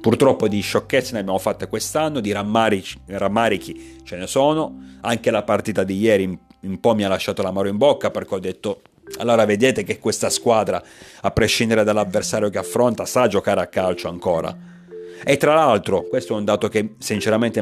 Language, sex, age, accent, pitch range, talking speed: Italian, male, 40-59, native, 90-115 Hz, 180 wpm